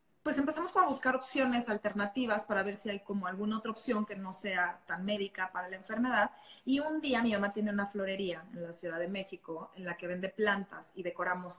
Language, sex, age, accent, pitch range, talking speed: Spanish, female, 20-39, Mexican, 190-245 Hz, 220 wpm